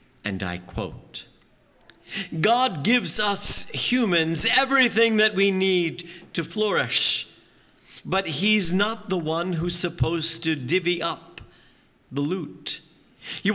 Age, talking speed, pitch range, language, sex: 50-69, 115 wpm, 160-210 Hz, English, male